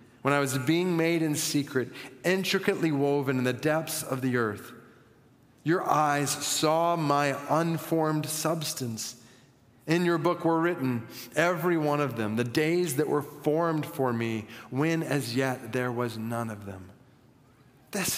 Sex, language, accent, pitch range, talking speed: male, English, American, 130-180 Hz, 150 wpm